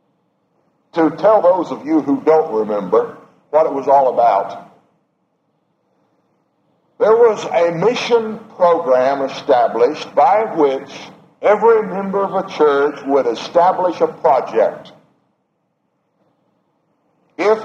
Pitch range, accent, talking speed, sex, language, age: 140-205 Hz, American, 105 wpm, male, English, 60-79